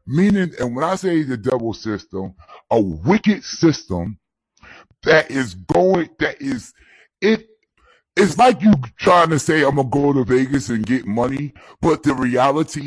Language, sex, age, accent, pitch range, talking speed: English, female, 30-49, American, 125-180 Hz, 165 wpm